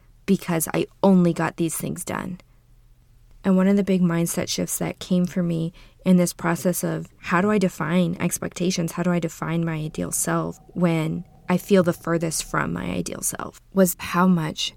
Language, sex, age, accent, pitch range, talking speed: English, female, 20-39, American, 165-185 Hz, 185 wpm